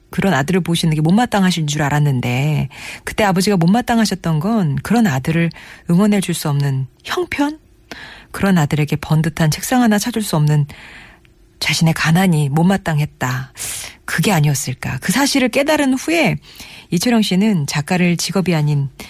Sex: female